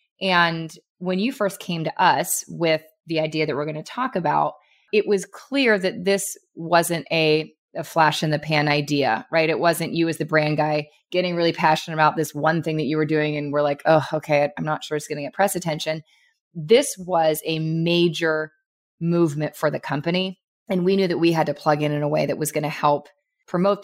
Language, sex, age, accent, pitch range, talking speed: English, female, 20-39, American, 155-185 Hz, 225 wpm